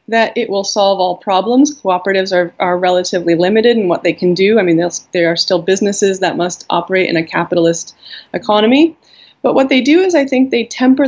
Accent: American